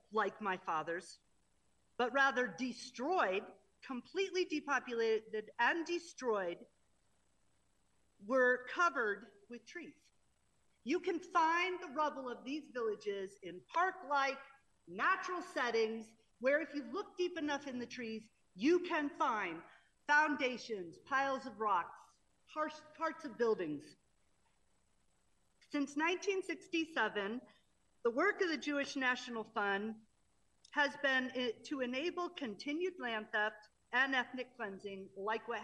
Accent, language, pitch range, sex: American, English, 215-310 Hz, female